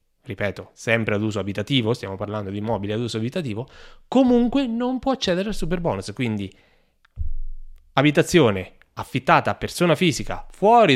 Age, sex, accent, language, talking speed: 20-39, male, native, Italian, 140 wpm